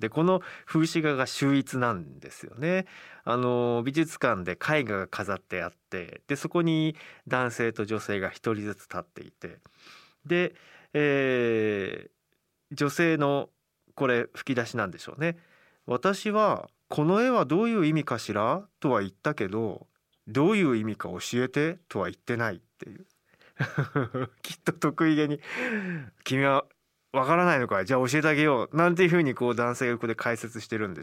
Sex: male